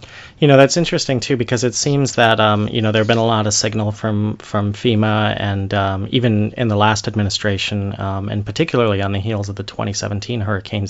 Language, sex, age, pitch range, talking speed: English, male, 30-49, 95-110 Hz, 210 wpm